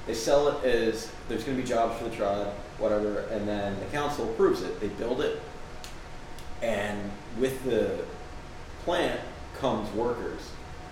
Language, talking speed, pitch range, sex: English, 155 wpm, 105-125 Hz, male